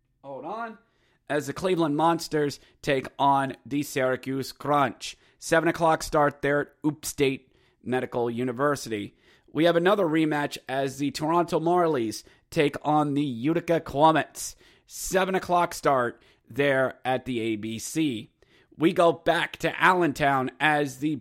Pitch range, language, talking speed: 125-160 Hz, English, 135 wpm